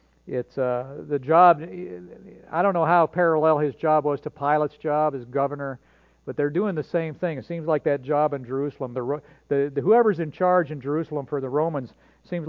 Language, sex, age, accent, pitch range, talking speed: English, male, 50-69, American, 140-175 Hz, 200 wpm